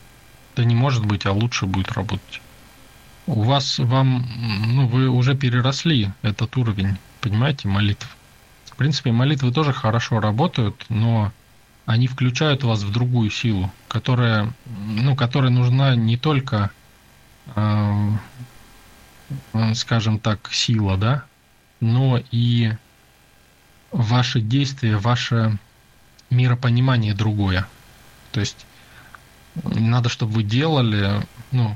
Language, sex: Russian, male